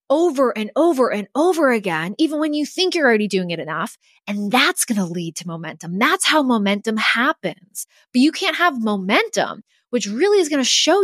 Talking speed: 200 wpm